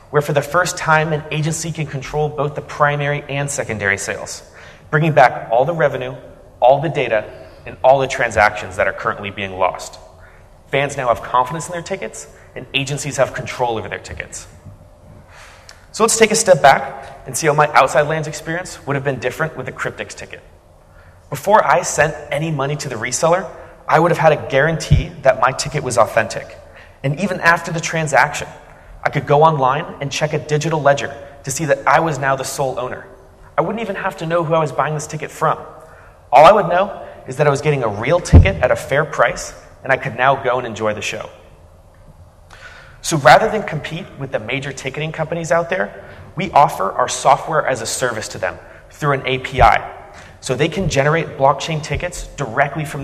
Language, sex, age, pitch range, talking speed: English, male, 30-49, 105-155 Hz, 200 wpm